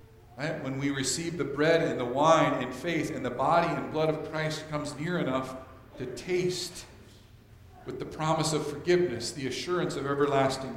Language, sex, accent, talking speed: English, male, American, 175 wpm